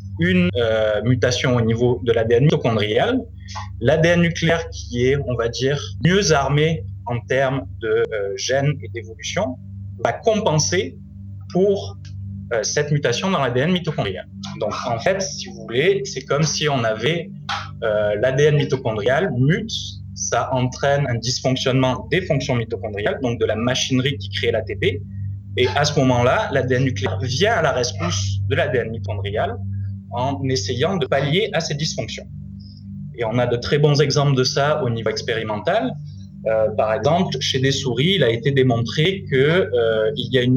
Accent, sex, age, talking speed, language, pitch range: French, male, 20-39, 160 wpm, French, 110-150 Hz